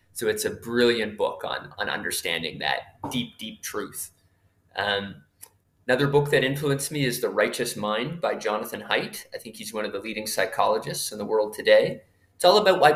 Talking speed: 190 wpm